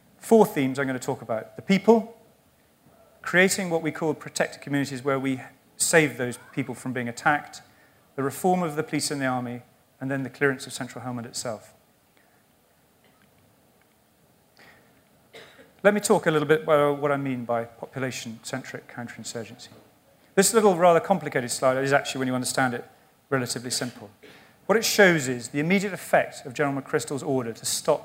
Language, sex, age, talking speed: English, male, 40-59, 165 wpm